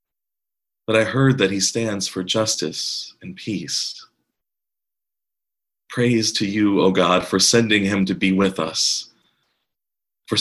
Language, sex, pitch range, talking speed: English, male, 95-115 Hz, 135 wpm